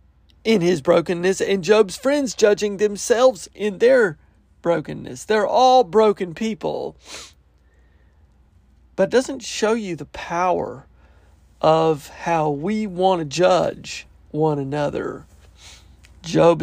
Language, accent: English, American